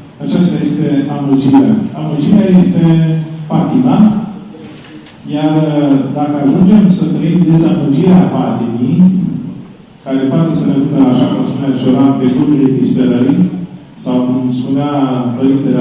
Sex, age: male, 40-59